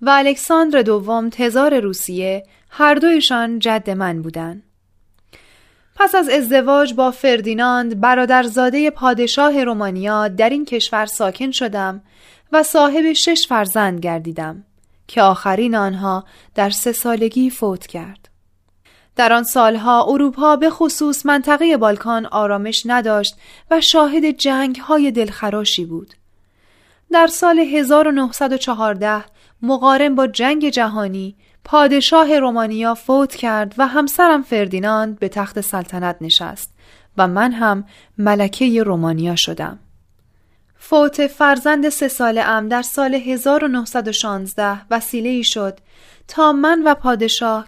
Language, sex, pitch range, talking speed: Persian, female, 205-285 Hz, 115 wpm